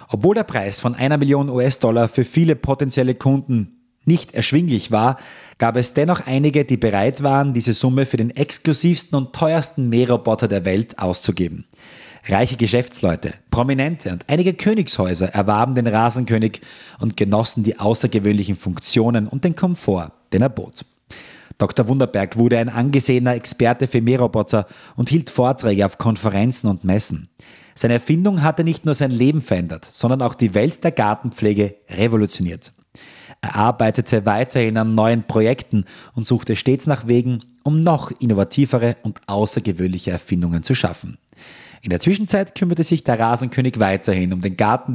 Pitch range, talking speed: 105-130 Hz, 150 wpm